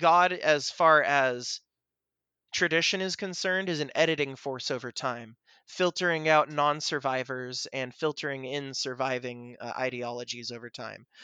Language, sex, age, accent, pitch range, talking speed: English, male, 20-39, American, 135-180 Hz, 130 wpm